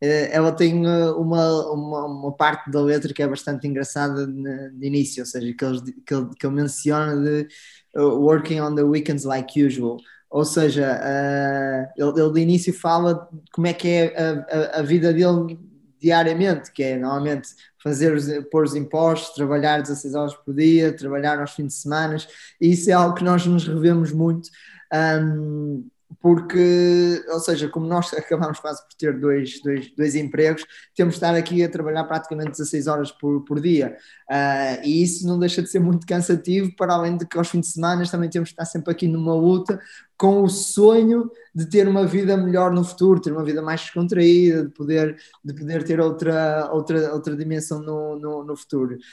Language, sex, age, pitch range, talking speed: Portuguese, male, 20-39, 145-175 Hz, 180 wpm